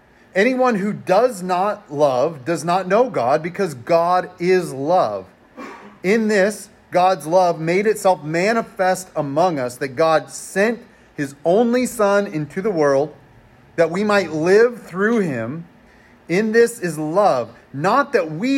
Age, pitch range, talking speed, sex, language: 30-49, 150-205 Hz, 140 wpm, male, English